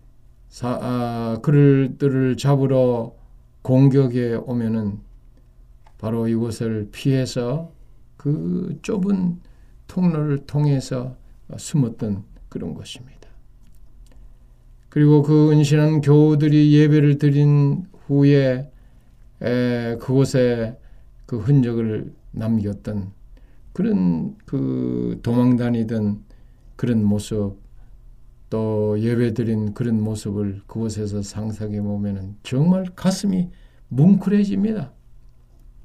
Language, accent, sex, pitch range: Korean, native, male, 105-155 Hz